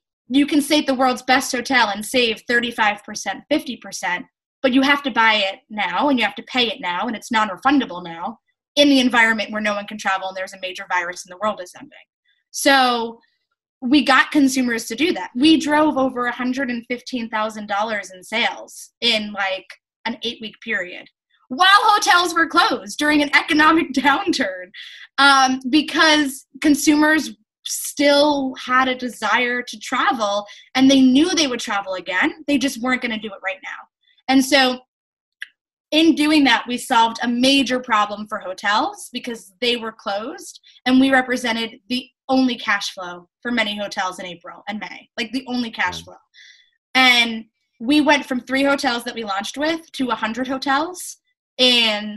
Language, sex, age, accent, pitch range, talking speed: English, female, 20-39, American, 220-280 Hz, 170 wpm